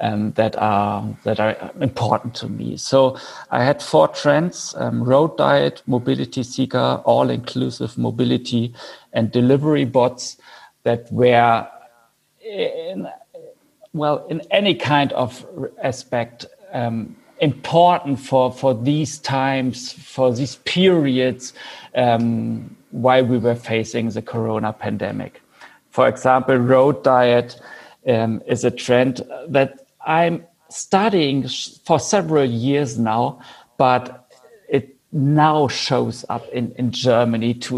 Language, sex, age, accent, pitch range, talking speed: German, male, 50-69, German, 120-135 Hz, 115 wpm